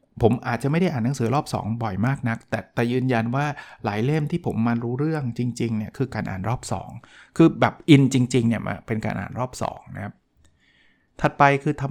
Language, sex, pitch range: Thai, male, 110-140 Hz